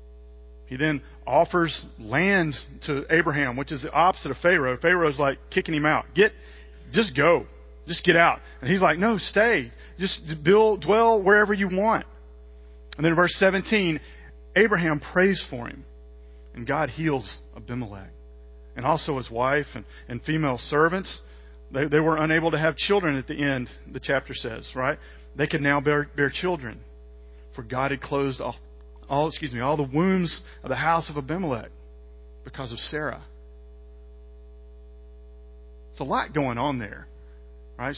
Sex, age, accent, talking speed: male, 40-59, American, 160 wpm